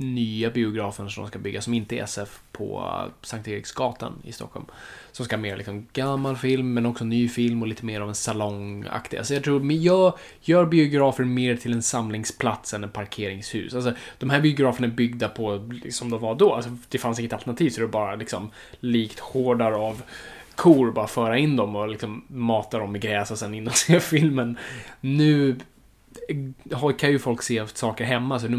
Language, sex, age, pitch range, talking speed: Swedish, male, 20-39, 110-125 Hz, 200 wpm